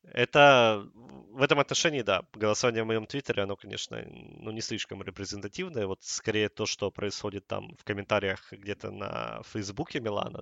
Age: 20-39